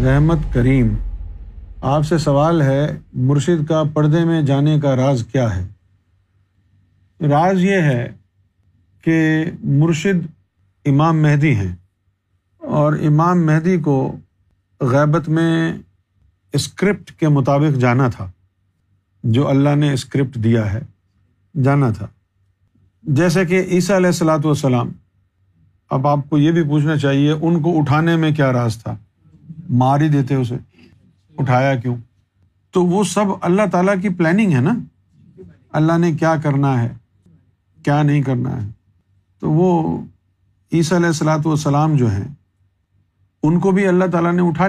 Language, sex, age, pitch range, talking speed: Urdu, male, 50-69, 95-155 Hz, 135 wpm